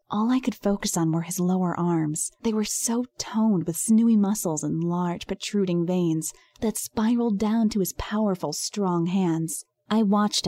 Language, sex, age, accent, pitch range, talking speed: English, female, 20-39, American, 170-215 Hz, 170 wpm